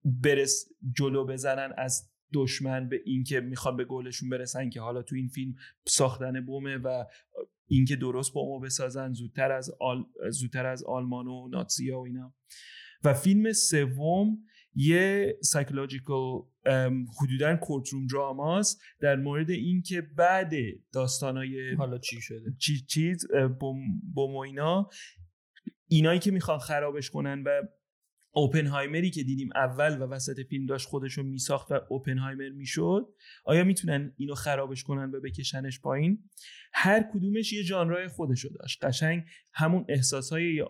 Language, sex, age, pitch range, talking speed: Persian, male, 30-49, 130-155 Hz, 140 wpm